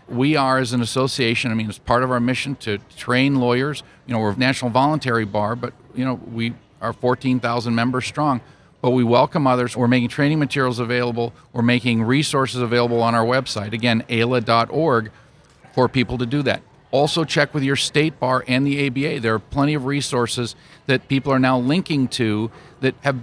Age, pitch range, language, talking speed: 50-69, 115-135 Hz, English, 205 wpm